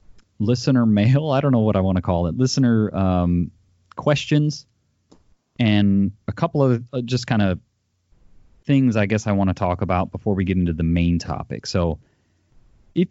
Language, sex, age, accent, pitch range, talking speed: English, male, 30-49, American, 90-115 Hz, 175 wpm